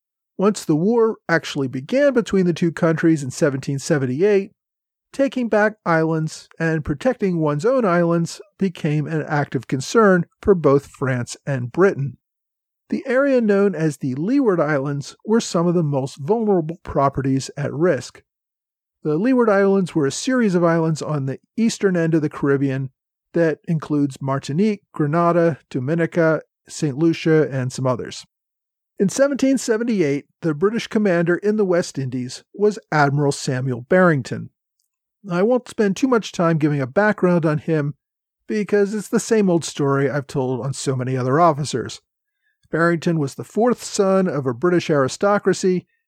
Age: 40-59